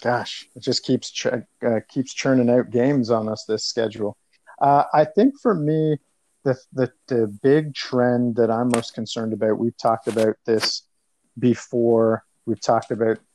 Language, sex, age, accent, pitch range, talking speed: English, male, 50-69, American, 115-135 Hz, 165 wpm